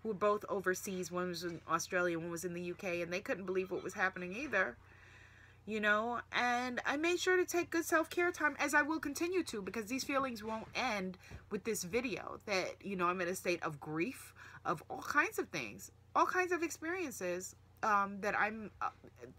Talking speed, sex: 205 wpm, female